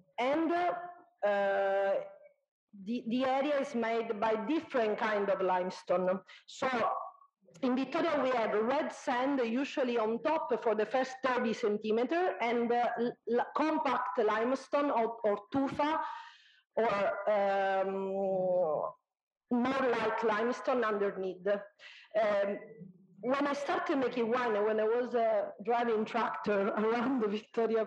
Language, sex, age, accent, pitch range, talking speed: English, female, 40-59, Italian, 215-275 Hz, 120 wpm